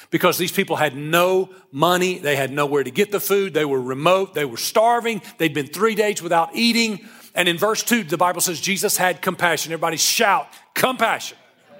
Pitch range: 175-230 Hz